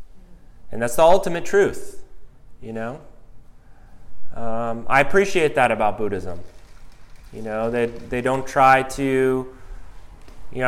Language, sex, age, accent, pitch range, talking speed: English, male, 20-39, American, 115-130 Hz, 125 wpm